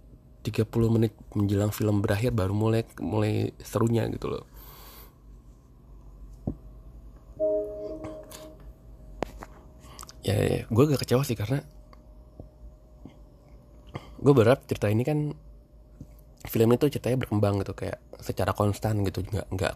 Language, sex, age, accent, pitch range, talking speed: Indonesian, male, 20-39, native, 95-125 Hz, 95 wpm